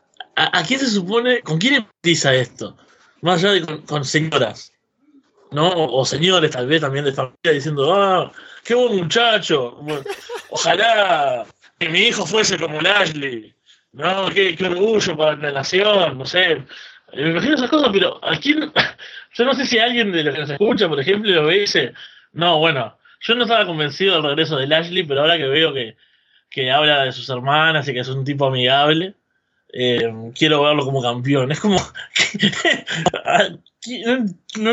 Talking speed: 175 wpm